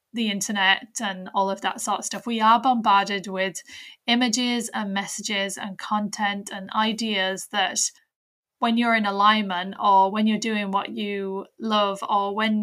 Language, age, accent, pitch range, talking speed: English, 10-29, British, 195-225 Hz, 160 wpm